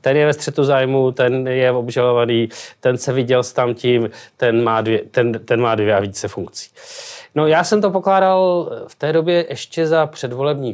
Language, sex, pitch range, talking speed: Czech, male, 115-160 Hz, 180 wpm